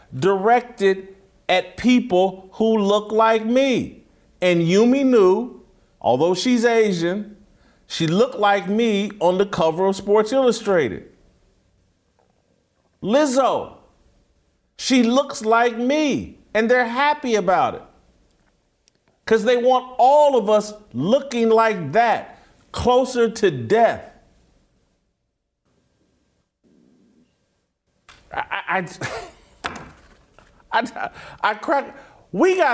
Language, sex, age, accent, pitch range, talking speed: English, male, 50-69, American, 175-240 Hz, 95 wpm